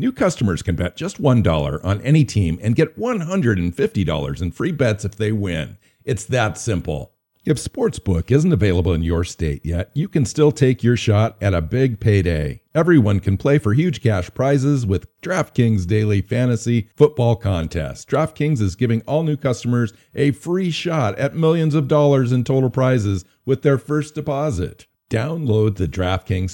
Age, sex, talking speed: 50-69, male, 170 wpm